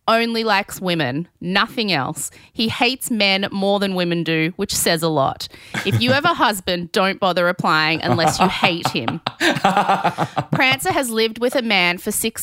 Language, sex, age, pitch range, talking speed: English, female, 30-49, 165-220 Hz, 175 wpm